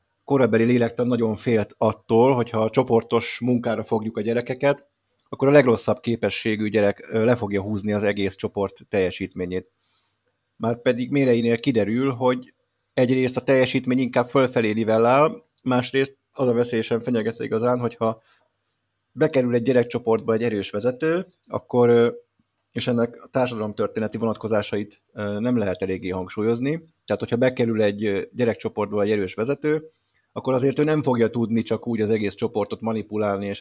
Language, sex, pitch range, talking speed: Hungarian, male, 105-125 Hz, 145 wpm